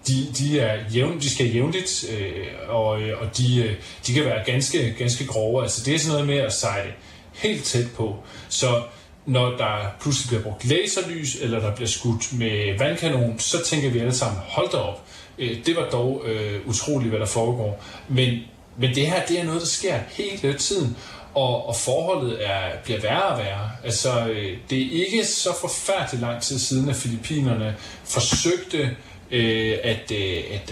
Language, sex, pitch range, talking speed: Danish, male, 110-135 Hz, 185 wpm